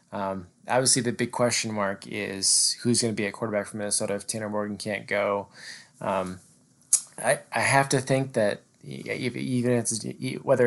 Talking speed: 175 wpm